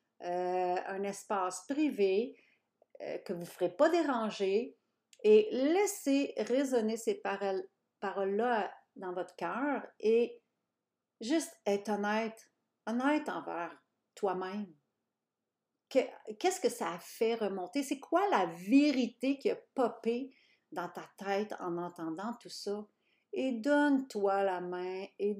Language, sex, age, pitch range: French, female, 50-69, 195-265 Hz